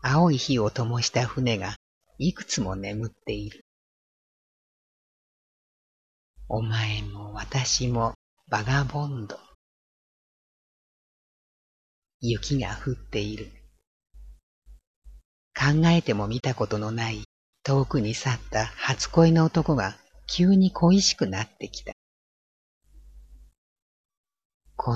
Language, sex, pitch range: Japanese, female, 100-130 Hz